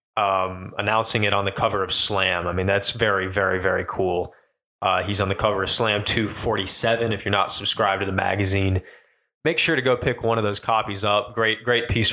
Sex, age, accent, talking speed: male, 20-39, American, 215 wpm